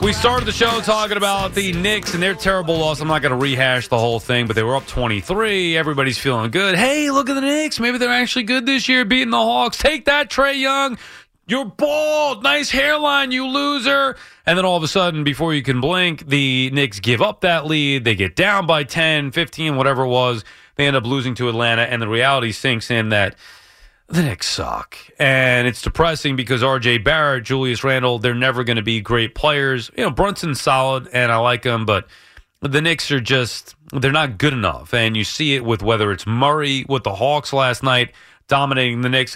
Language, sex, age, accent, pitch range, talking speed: English, male, 30-49, American, 125-175 Hz, 215 wpm